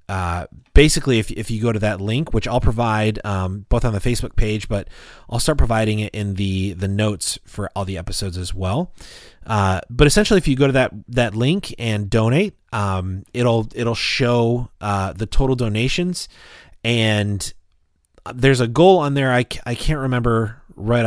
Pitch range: 95-120 Hz